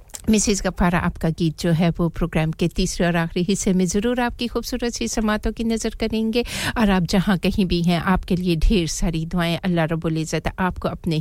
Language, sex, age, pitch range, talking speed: English, female, 50-69, 170-210 Hz, 195 wpm